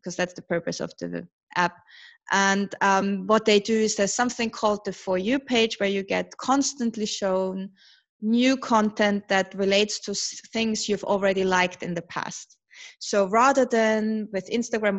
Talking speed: 170 wpm